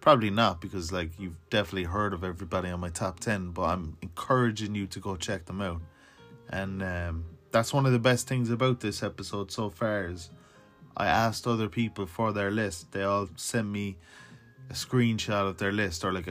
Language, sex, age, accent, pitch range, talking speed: English, male, 20-39, Irish, 95-110 Hz, 200 wpm